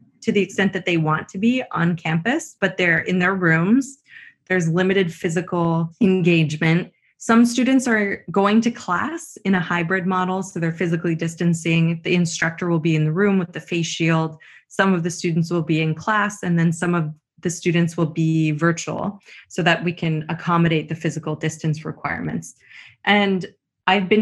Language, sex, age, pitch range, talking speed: English, female, 20-39, 165-195 Hz, 180 wpm